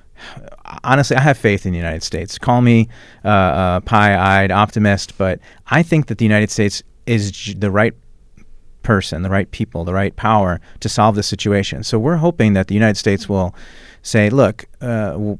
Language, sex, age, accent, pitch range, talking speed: English, male, 40-59, American, 95-115 Hz, 185 wpm